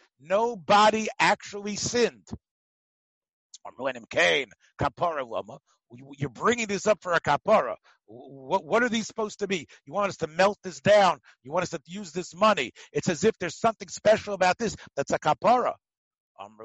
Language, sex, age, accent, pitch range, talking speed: English, male, 60-79, American, 170-225 Hz, 165 wpm